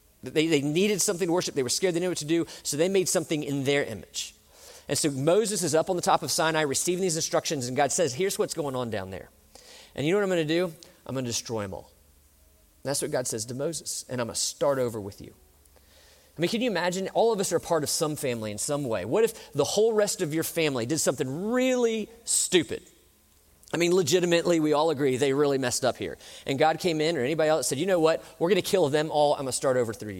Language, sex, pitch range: English, male, 140-195 Hz